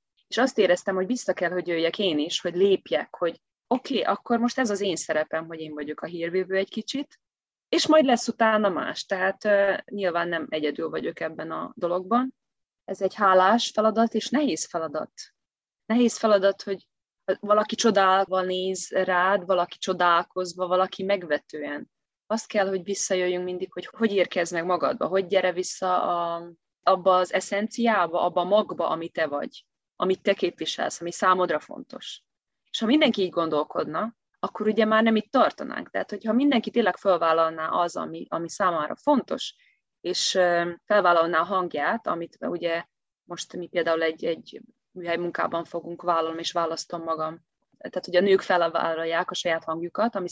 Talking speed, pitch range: 160 wpm, 170-205 Hz